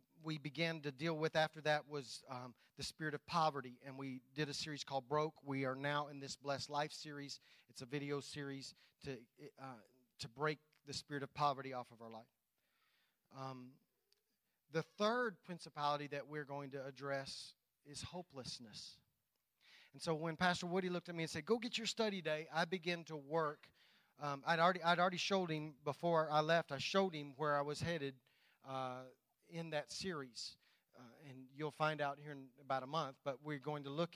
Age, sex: 40-59, male